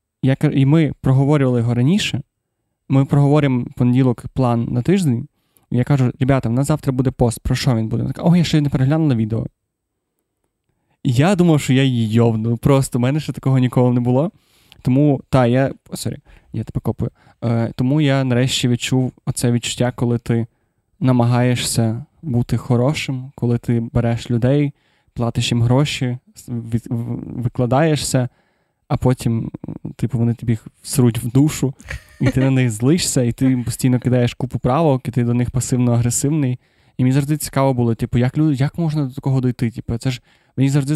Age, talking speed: 20-39, 165 wpm